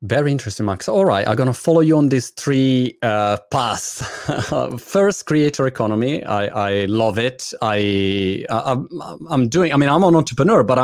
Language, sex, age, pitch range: Italian, male, 30-49, 105-135 Hz